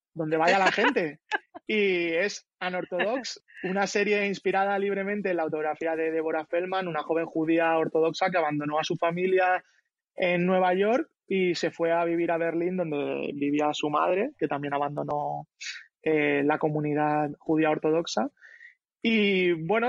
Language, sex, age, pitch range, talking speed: English, male, 20-39, 155-200 Hz, 150 wpm